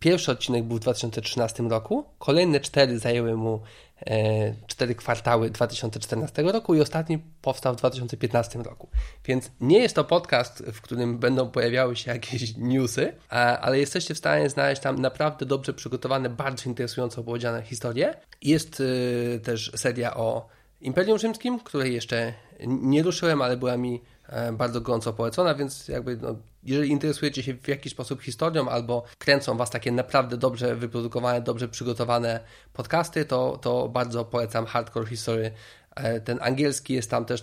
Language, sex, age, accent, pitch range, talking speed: Polish, male, 20-39, native, 115-135 Hz, 150 wpm